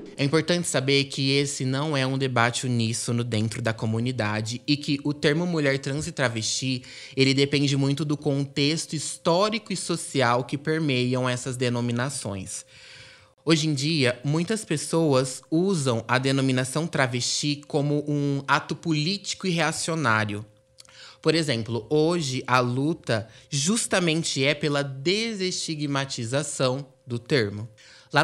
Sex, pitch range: male, 120-150 Hz